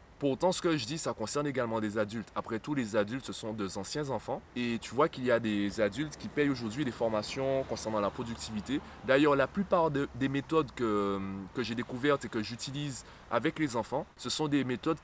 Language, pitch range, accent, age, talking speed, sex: French, 105-135 Hz, French, 20-39, 220 wpm, male